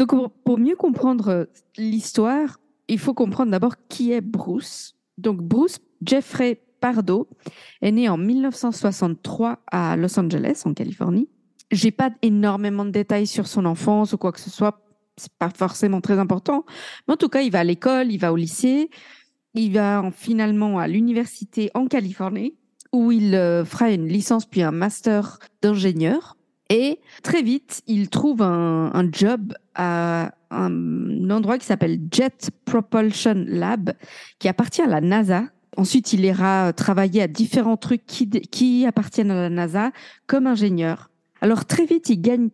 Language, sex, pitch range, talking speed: French, female, 190-245 Hz, 160 wpm